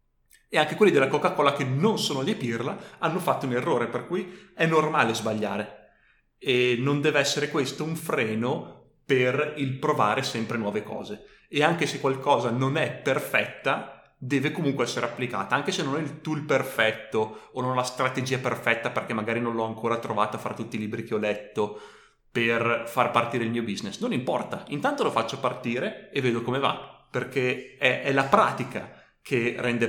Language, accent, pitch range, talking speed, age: Italian, native, 115-130 Hz, 180 wpm, 30-49